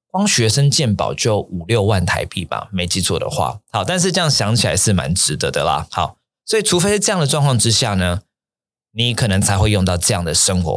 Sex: male